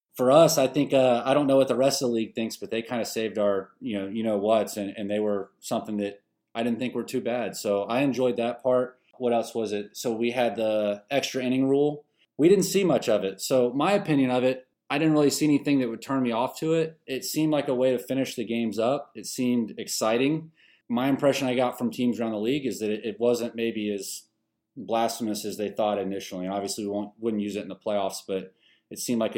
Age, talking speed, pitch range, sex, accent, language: 30-49, 255 wpm, 105-130 Hz, male, American, English